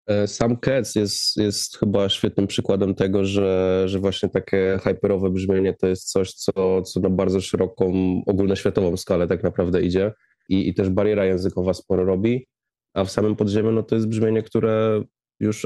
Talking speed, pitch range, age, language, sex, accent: 170 wpm, 95-105 Hz, 20-39, Polish, male, native